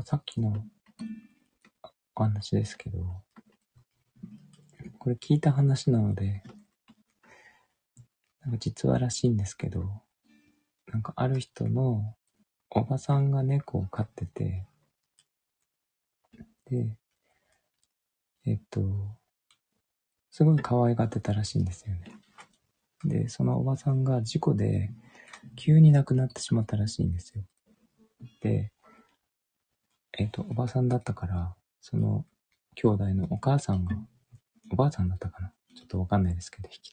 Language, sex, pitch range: Japanese, male, 100-140 Hz